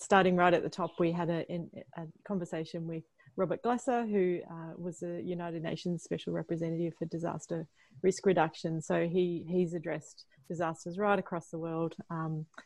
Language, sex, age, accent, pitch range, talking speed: English, female, 30-49, Australian, 165-190 Hz, 165 wpm